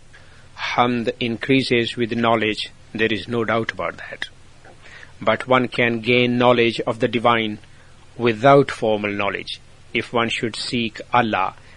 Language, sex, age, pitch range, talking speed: English, male, 50-69, 105-125 Hz, 135 wpm